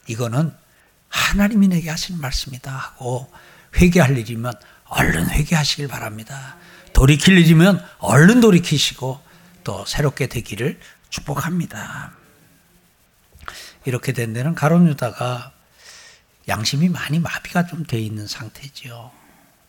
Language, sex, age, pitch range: Korean, male, 60-79, 135-205 Hz